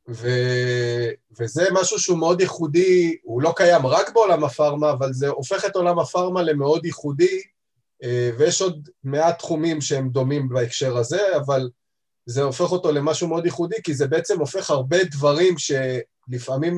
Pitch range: 125-160 Hz